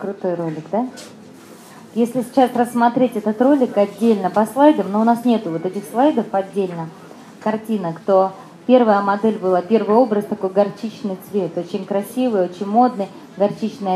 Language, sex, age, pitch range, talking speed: Russian, female, 20-39, 195-240 Hz, 145 wpm